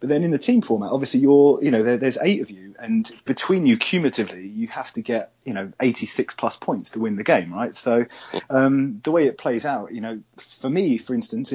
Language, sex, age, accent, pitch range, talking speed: English, male, 30-49, British, 115-160 Hz, 240 wpm